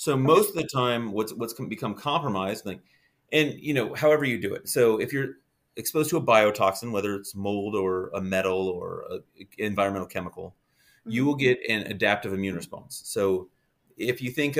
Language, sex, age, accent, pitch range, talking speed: English, male, 30-49, American, 100-140 Hz, 185 wpm